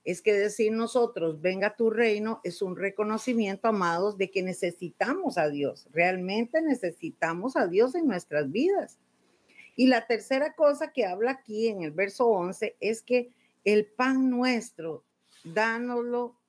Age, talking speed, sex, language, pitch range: 50-69, 145 wpm, female, Spanish, 180-240 Hz